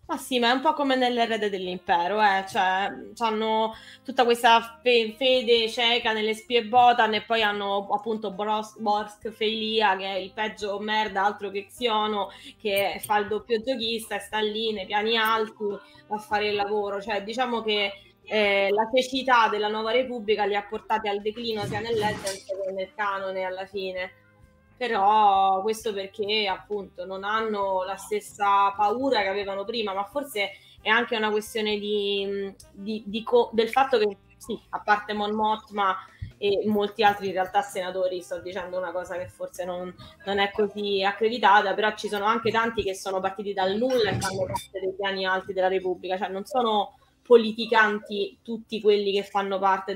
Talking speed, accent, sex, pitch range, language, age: 175 wpm, native, female, 195-225 Hz, Italian, 20-39